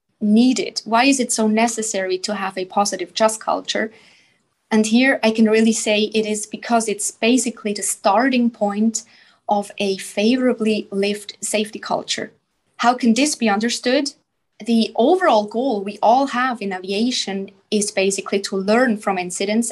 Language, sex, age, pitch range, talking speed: English, female, 20-39, 205-245 Hz, 155 wpm